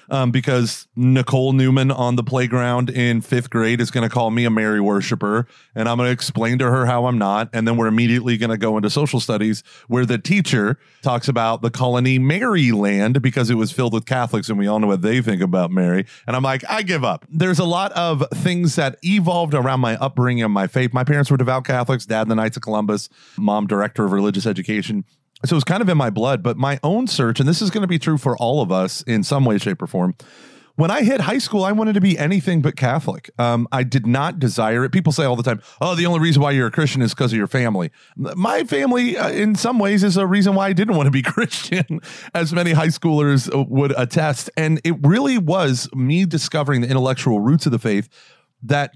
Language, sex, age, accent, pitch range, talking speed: English, male, 30-49, American, 115-160 Hz, 240 wpm